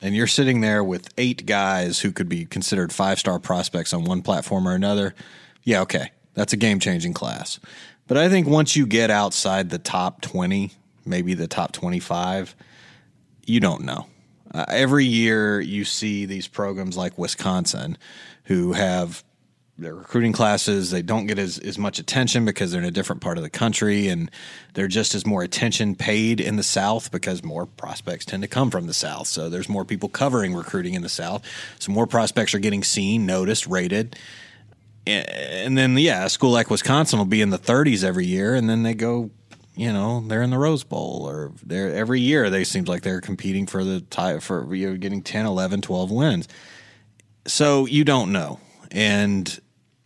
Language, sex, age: English, male, 30-49